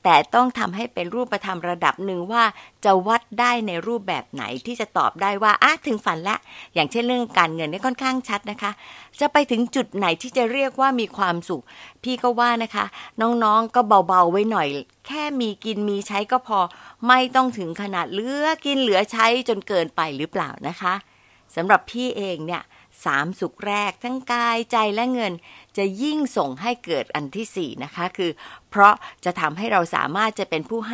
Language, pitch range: Thai, 190-245 Hz